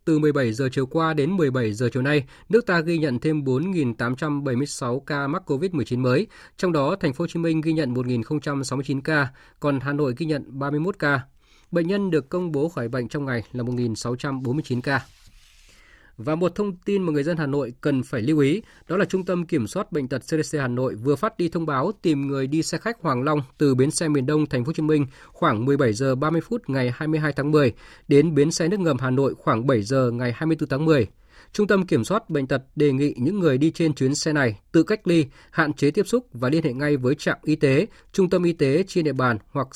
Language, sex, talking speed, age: Vietnamese, male, 235 wpm, 20-39